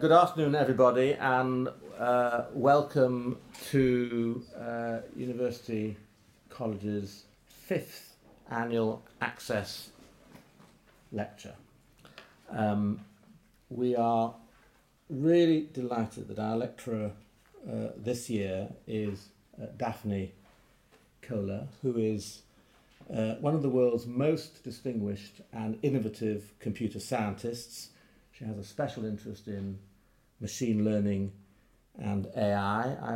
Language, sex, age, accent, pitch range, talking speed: English, male, 50-69, British, 105-125 Hz, 95 wpm